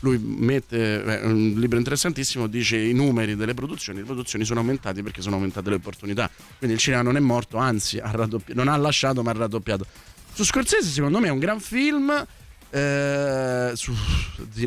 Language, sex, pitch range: Italian, male, 115-140 Hz